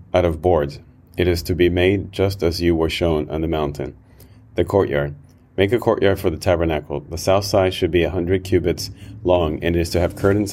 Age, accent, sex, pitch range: 30-49, American, male, 80-95 Hz